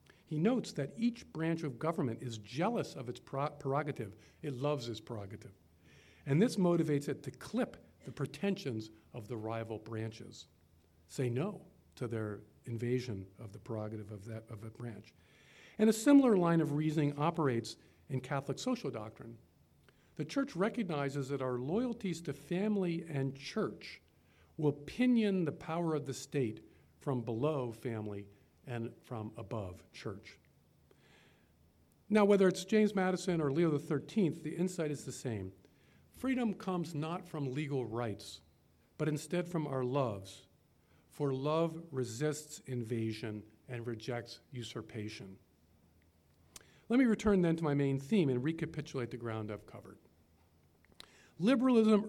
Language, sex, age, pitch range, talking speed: English, male, 50-69, 110-160 Hz, 140 wpm